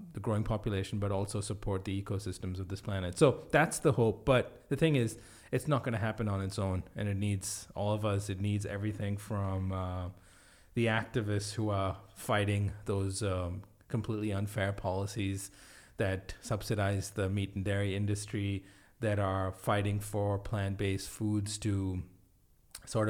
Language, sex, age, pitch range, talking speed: English, male, 30-49, 95-110 Hz, 165 wpm